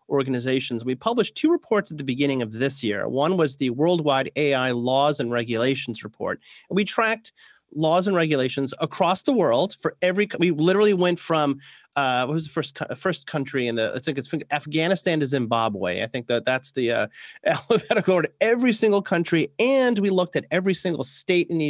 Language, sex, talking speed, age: Hungarian, male, 190 wpm, 30-49